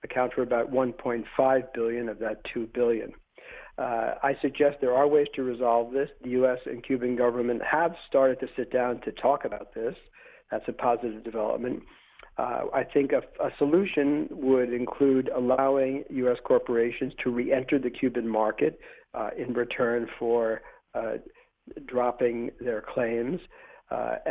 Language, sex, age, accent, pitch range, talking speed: English, male, 50-69, American, 120-135 Hz, 150 wpm